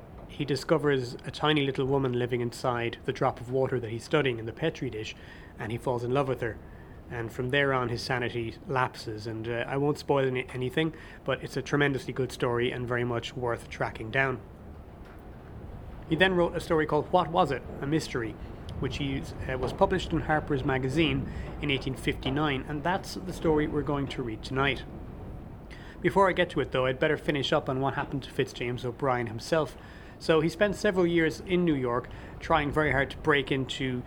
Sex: male